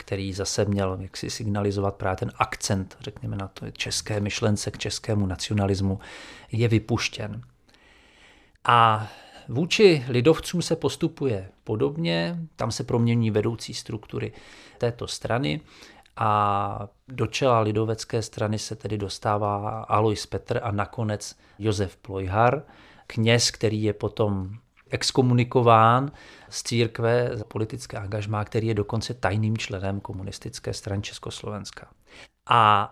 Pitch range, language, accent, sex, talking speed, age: 100-125 Hz, Czech, native, male, 120 wpm, 40-59